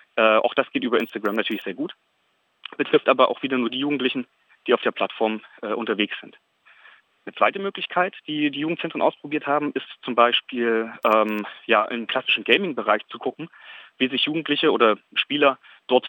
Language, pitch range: German, 115-145 Hz